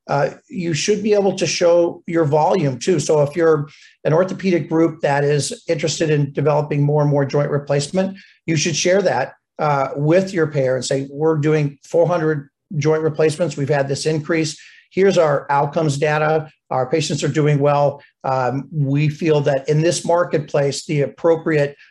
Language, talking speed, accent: English, 175 wpm, American